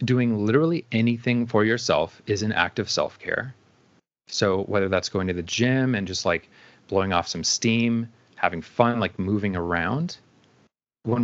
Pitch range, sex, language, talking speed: 105-130 Hz, male, English, 160 wpm